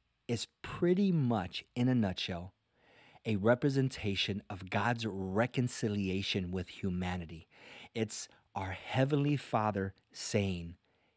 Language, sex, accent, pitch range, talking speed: English, male, American, 95-125 Hz, 95 wpm